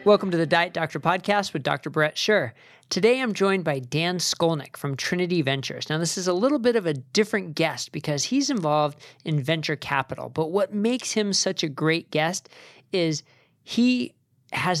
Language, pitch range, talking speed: English, 150-190 Hz, 185 wpm